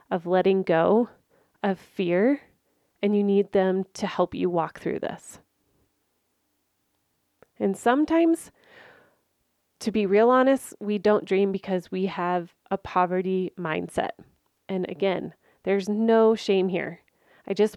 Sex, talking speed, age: female, 130 wpm, 30-49